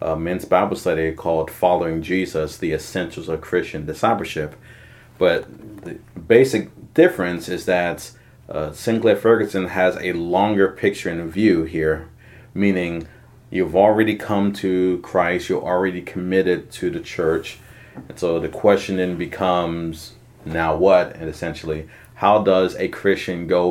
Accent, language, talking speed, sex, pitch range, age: American, English, 140 wpm, male, 85-100 Hz, 30-49